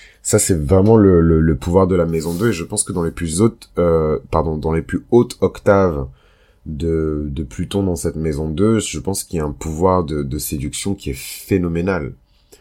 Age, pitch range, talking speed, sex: 30-49, 80-105 Hz, 220 wpm, male